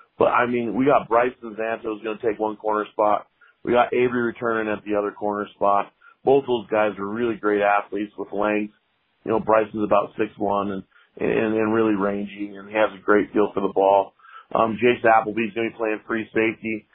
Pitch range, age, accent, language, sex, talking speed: 100-115 Hz, 40-59, American, English, male, 210 wpm